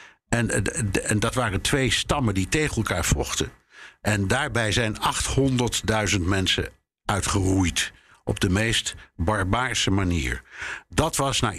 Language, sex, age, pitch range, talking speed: Dutch, male, 60-79, 95-120 Hz, 125 wpm